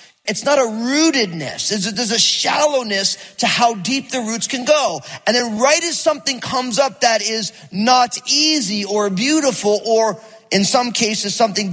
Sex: male